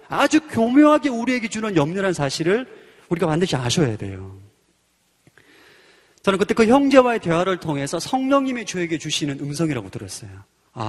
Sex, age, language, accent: male, 30-49, Korean, native